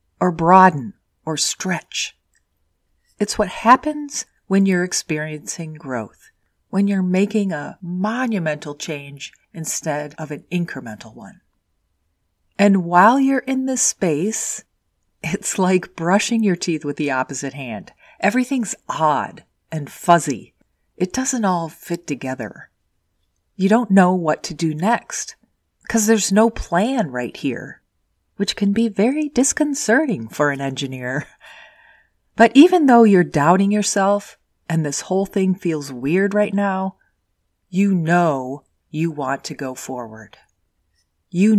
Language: English